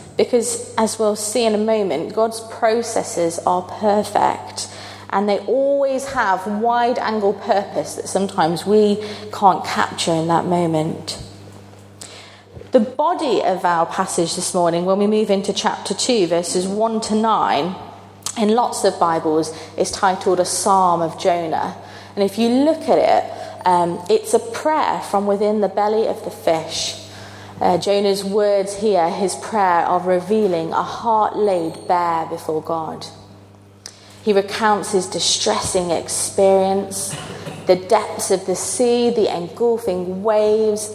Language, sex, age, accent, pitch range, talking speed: English, female, 30-49, British, 165-215 Hz, 140 wpm